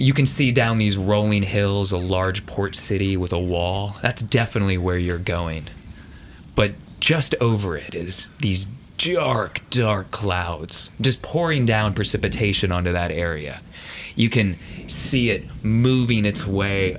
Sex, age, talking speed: male, 20-39, 150 wpm